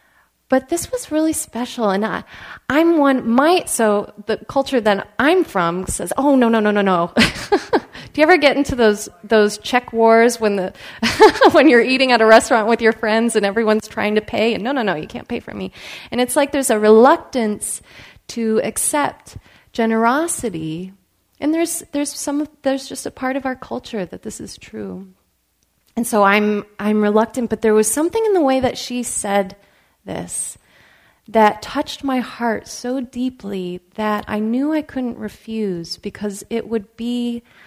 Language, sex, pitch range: English, female, 210-255 Hz